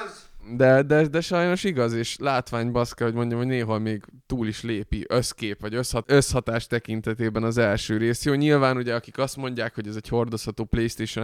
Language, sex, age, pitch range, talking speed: Hungarian, male, 20-39, 110-130 Hz, 175 wpm